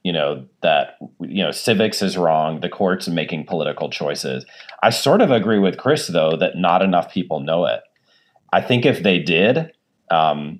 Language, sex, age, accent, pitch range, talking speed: English, male, 40-59, American, 85-115 Hz, 180 wpm